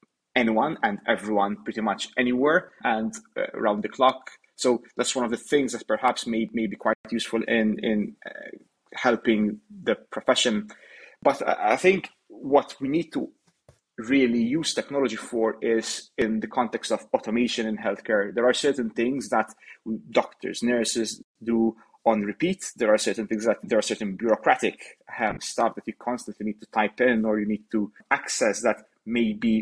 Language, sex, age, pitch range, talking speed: English, male, 30-49, 110-125 Hz, 175 wpm